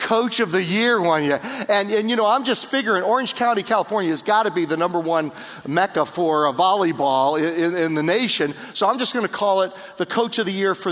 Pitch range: 150-205 Hz